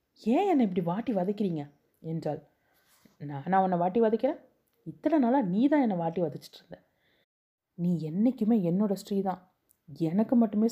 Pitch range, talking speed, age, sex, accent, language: 160-215 Hz, 135 wpm, 30-49, female, native, Tamil